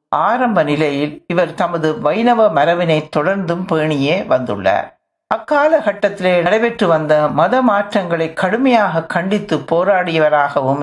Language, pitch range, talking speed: Tamil, 150-205 Hz, 100 wpm